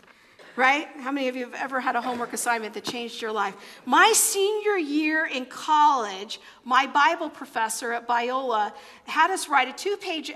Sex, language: female, English